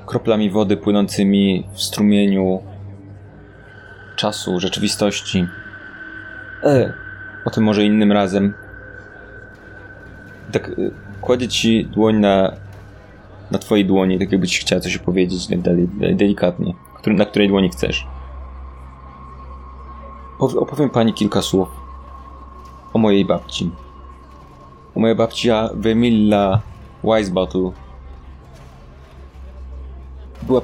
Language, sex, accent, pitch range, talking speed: Polish, male, native, 70-105 Hz, 90 wpm